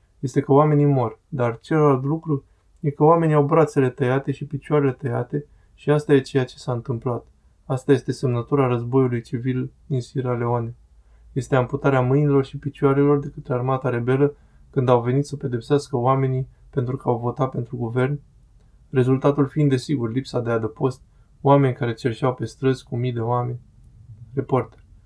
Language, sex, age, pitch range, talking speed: Romanian, male, 20-39, 120-145 Hz, 165 wpm